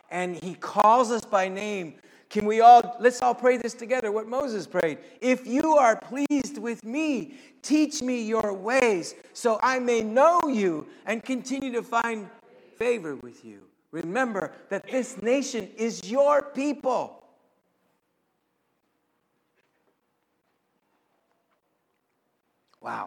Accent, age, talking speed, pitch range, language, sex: American, 60-79, 120 wpm, 145-240 Hz, English, male